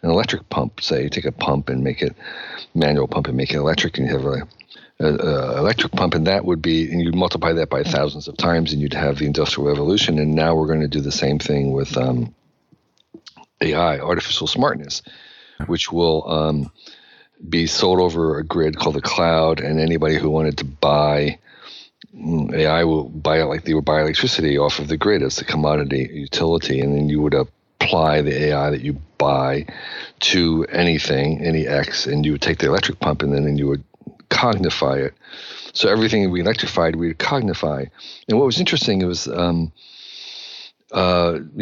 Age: 50-69